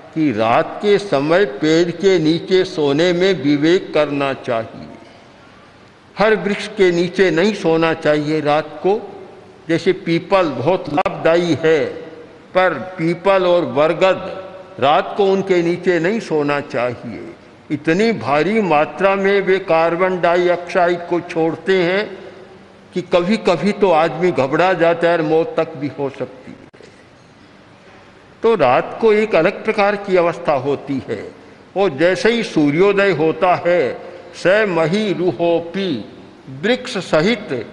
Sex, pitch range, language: male, 160-195 Hz, Hindi